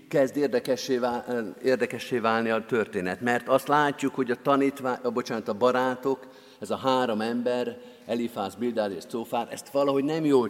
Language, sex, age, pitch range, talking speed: Hungarian, male, 50-69, 115-145 Hz, 155 wpm